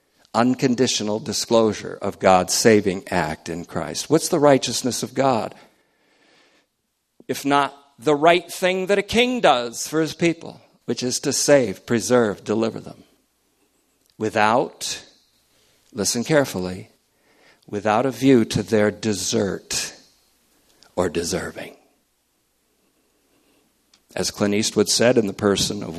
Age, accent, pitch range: 50-69, American, 100-135 Hz